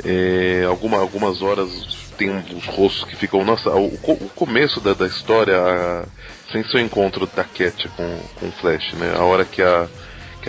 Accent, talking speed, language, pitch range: Brazilian, 190 wpm, Portuguese, 90-105 Hz